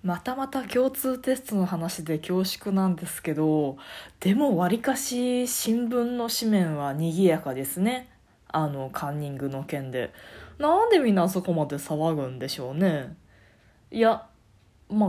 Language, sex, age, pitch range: Japanese, female, 20-39, 155-240 Hz